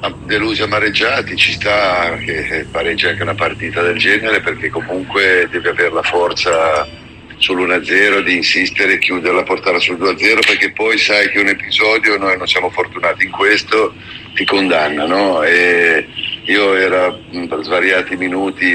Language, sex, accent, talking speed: Italian, male, native, 155 wpm